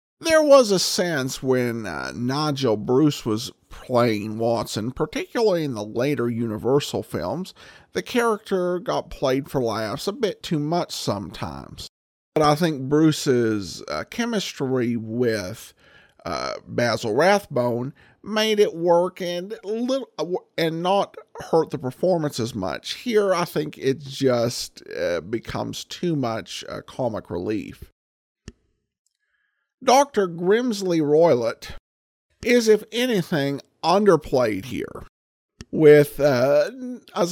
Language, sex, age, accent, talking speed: English, male, 50-69, American, 115 wpm